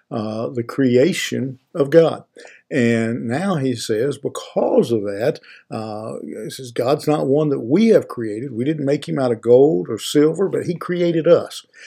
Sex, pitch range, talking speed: male, 120-150 Hz, 175 wpm